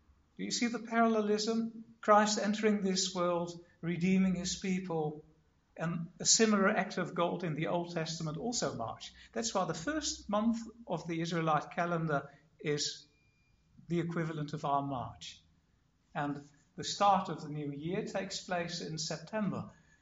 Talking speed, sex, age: 150 wpm, male, 60-79